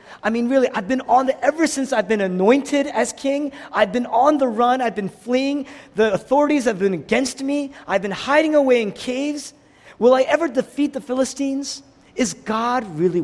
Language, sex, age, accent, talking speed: English, male, 40-59, American, 195 wpm